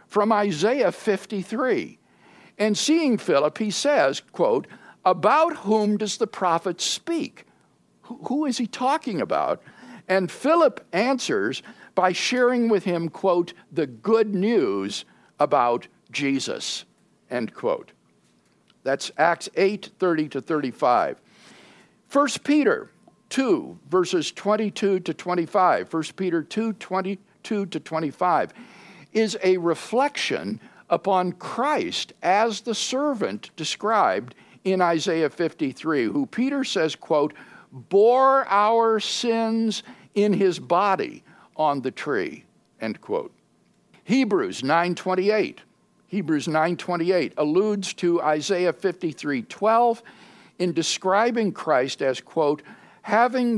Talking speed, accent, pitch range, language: 100 wpm, American, 170-235 Hz, English